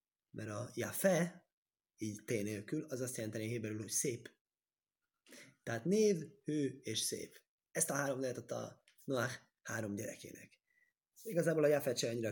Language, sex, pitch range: Hungarian, male, 105-130 Hz